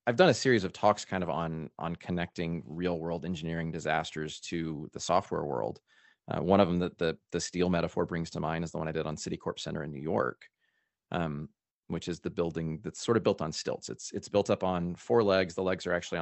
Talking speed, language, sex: 235 wpm, English, male